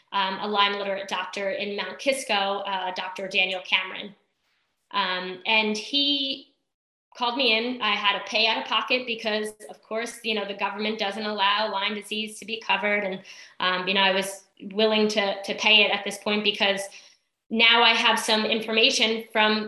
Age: 10-29